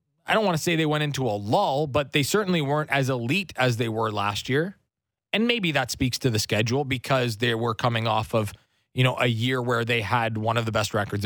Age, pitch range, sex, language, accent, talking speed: 20-39, 115-155 Hz, male, English, American, 245 wpm